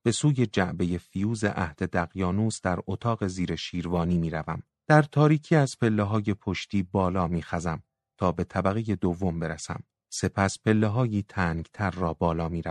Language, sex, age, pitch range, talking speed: Persian, male, 30-49, 90-105 Hz, 155 wpm